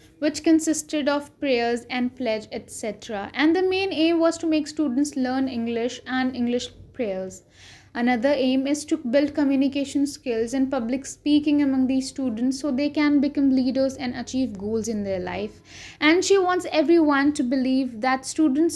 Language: English